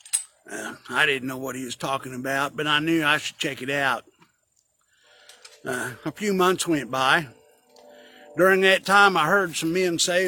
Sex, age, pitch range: male, 50-69, 145-180 Hz